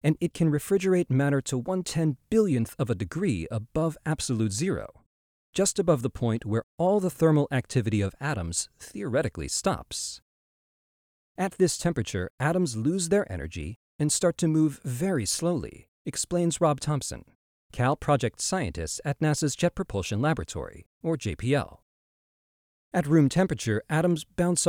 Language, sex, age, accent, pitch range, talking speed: English, male, 40-59, American, 115-165 Hz, 140 wpm